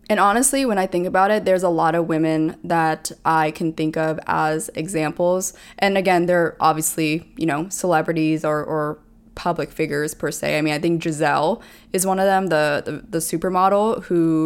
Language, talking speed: English, 190 wpm